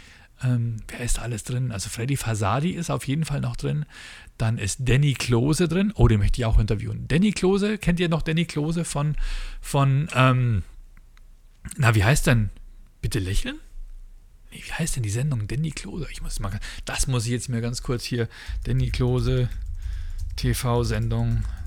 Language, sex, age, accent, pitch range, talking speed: German, male, 40-59, German, 115-160 Hz, 175 wpm